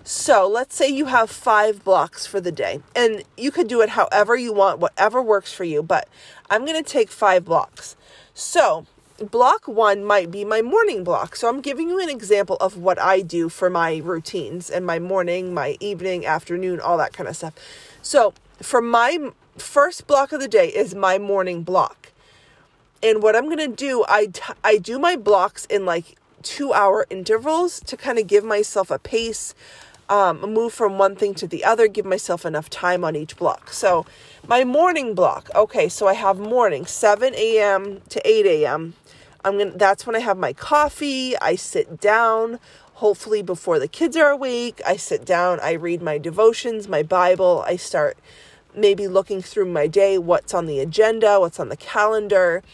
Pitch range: 185-255 Hz